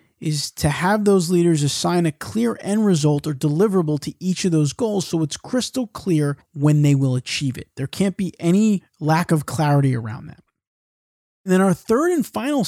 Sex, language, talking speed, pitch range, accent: male, English, 195 wpm, 145-195 Hz, American